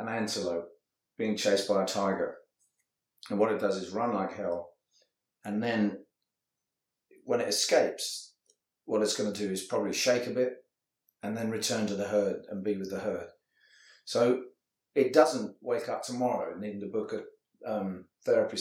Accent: British